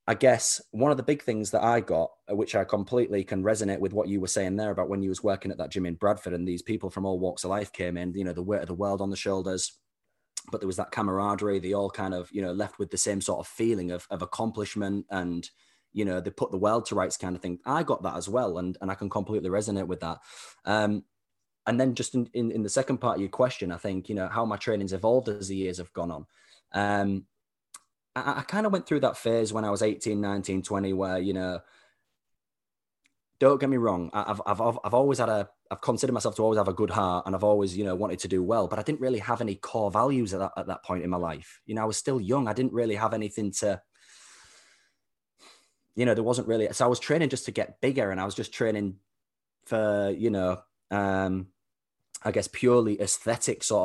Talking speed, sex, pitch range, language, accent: 250 wpm, male, 95-115 Hz, English, British